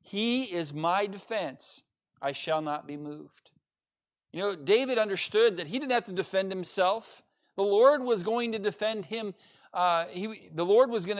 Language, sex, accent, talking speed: English, male, American, 175 wpm